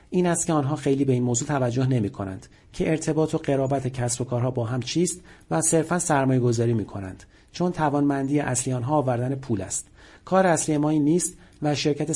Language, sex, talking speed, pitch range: Persian, male, 200 wpm, 125-160 Hz